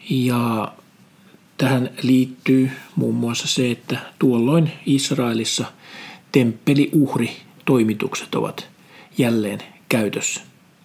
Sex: male